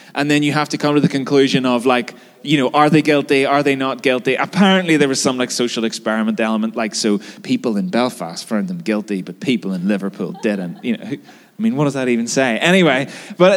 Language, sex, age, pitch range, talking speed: English, male, 20-39, 130-185 Hz, 230 wpm